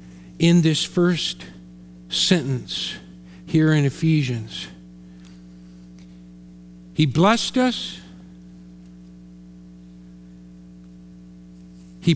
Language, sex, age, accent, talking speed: English, male, 50-69, American, 55 wpm